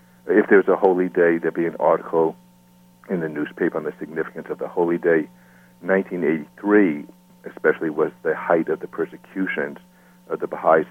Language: English